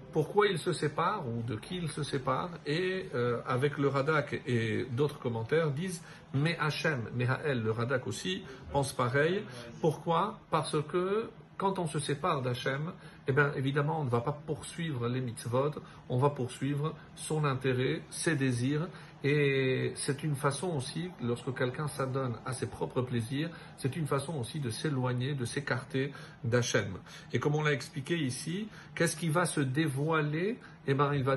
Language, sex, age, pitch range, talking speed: French, male, 50-69, 130-160 Hz, 165 wpm